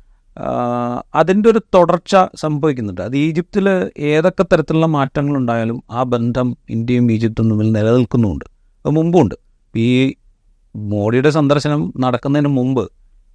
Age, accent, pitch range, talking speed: 30-49, native, 110-145 Hz, 100 wpm